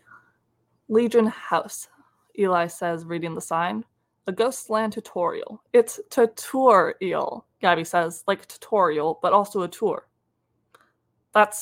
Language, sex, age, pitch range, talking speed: English, female, 20-39, 170-225 Hz, 110 wpm